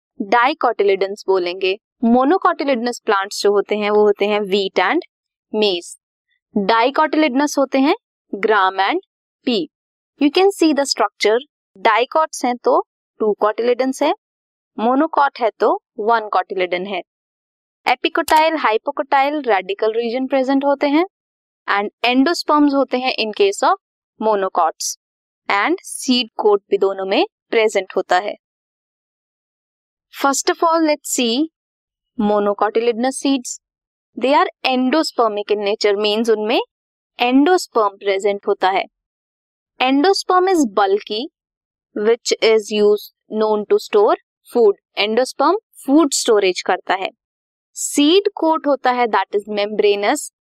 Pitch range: 210-320 Hz